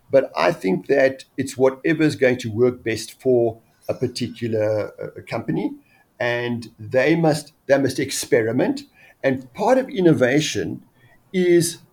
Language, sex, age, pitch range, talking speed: English, male, 50-69, 125-160 Hz, 130 wpm